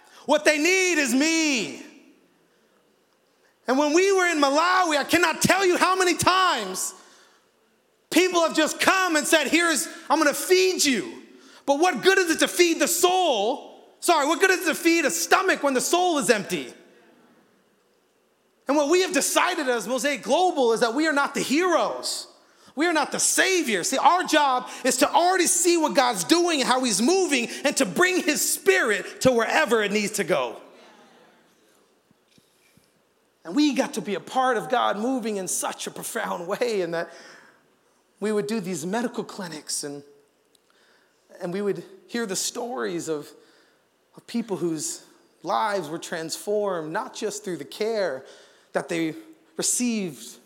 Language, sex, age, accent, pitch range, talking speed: English, male, 30-49, American, 220-340 Hz, 170 wpm